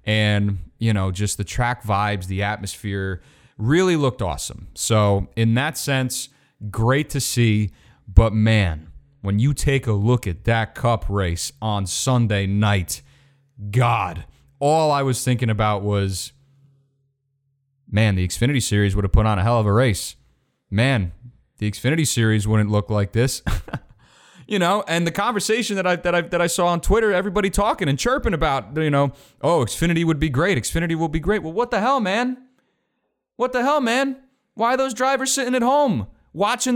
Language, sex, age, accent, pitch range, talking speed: English, male, 30-49, American, 105-160 Hz, 175 wpm